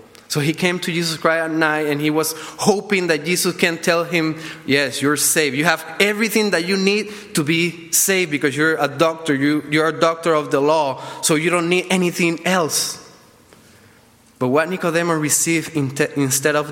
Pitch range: 130-175 Hz